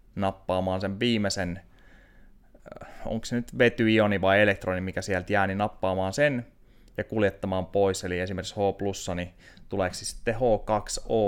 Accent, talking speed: native, 135 wpm